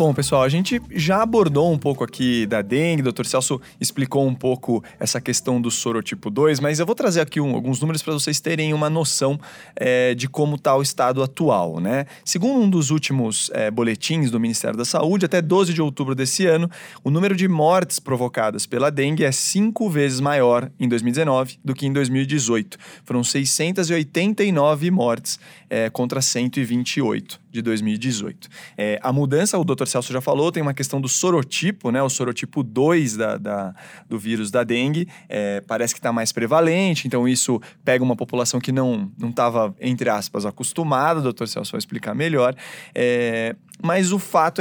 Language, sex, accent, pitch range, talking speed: English, male, Brazilian, 125-160 Hz, 180 wpm